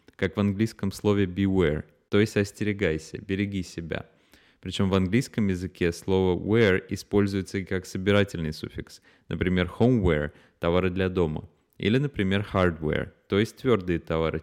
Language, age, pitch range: Russian, 20-39, 85-100 Hz